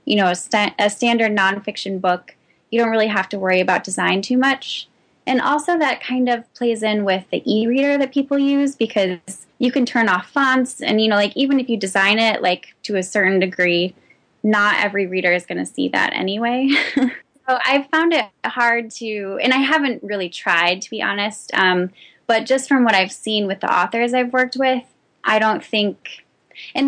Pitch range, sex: 190-250 Hz, female